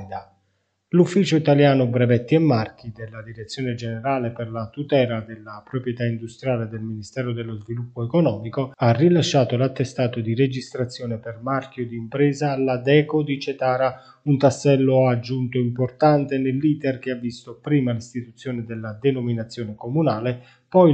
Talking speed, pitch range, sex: 130 wpm, 120-140 Hz, male